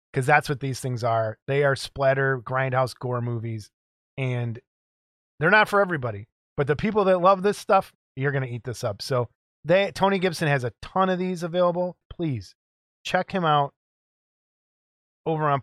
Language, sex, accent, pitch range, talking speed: English, male, American, 135-175 Hz, 175 wpm